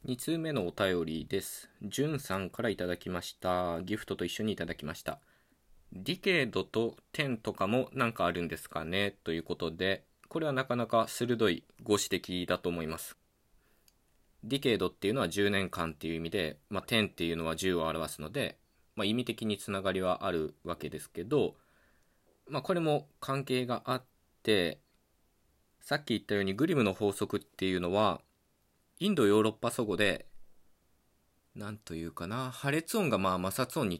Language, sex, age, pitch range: Japanese, male, 20-39, 85-120 Hz